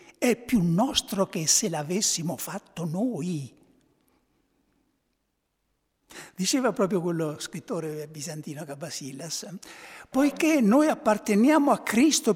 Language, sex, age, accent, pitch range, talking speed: Italian, male, 60-79, native, 155-245 Hz, 90 wpm